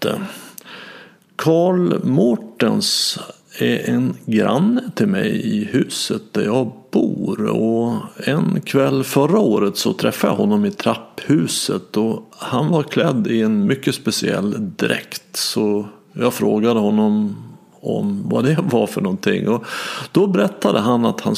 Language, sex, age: Swedish, male, 50-69